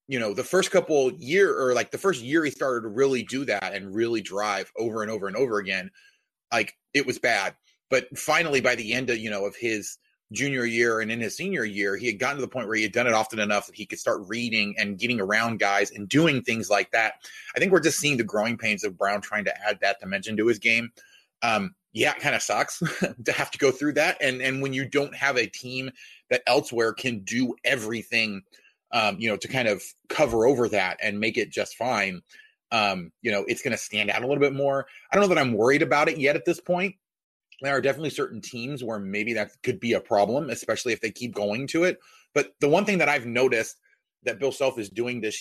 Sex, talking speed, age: male, 245 wpm, 30-49